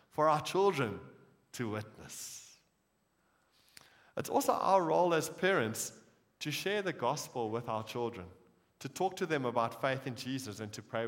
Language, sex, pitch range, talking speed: English, male, 125-185 Hz, 155 wpm